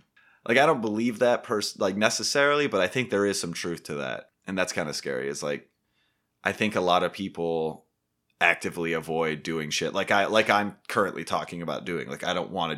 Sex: male